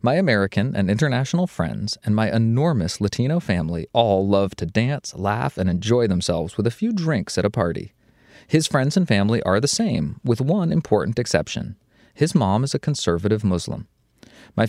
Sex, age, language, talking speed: male, 30-49, English, 175 wpm